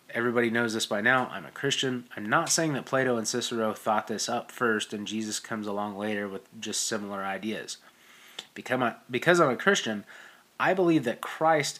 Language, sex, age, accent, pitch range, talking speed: English, male, 20-39, American, 105-130 Hz, 190 wpm